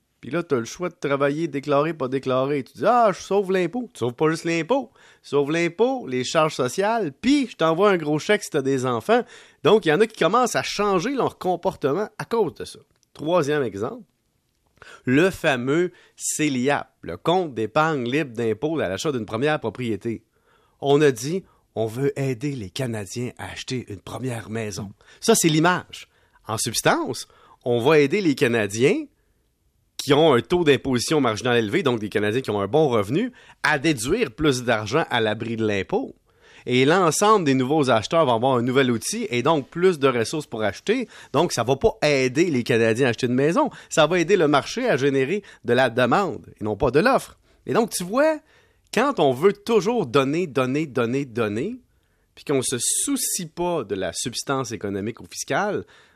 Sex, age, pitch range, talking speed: male, 30-49, 125-180 Hz, 200 wpm